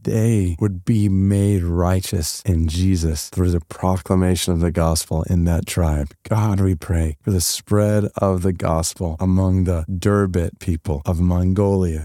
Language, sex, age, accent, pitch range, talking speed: English, male, 30-49, American, 85-115 Hz, 155 wpm